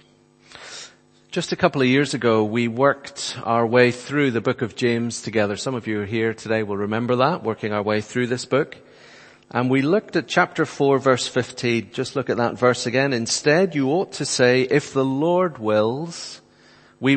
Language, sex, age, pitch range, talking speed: English, male, 40-59, 110-135 Hz, 190 wpm